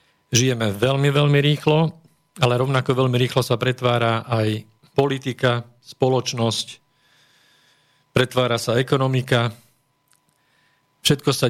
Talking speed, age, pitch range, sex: 95 wpm, 40-59, 120-145 Hz, male